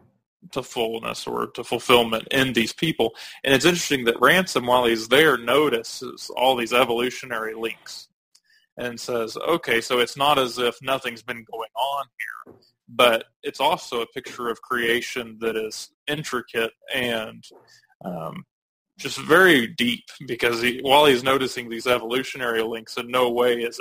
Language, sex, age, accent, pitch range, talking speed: English, male, 20-39, American, 115-135 Hz, 150 wpm